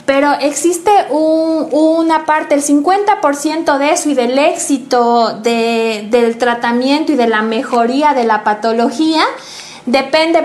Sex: female